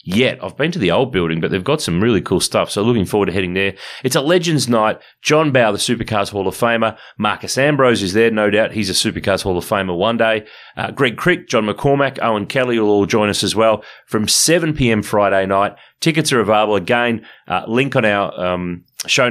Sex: male